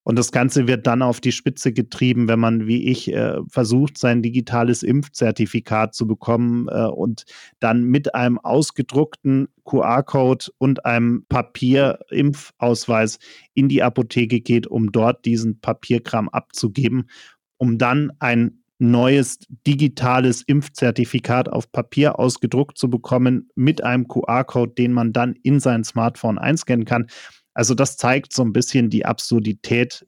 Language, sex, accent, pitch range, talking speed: German, male, German, 115-135 Hz, 140 wpm